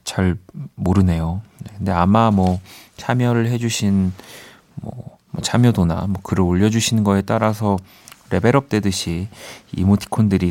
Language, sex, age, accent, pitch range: Korean, male, 40-59, native, 90-115 Hz